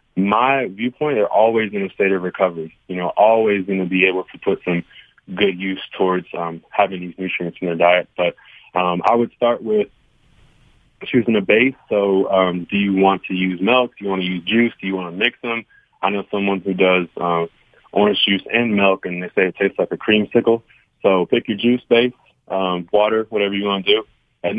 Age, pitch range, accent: 20-39, 90-105 Hz, American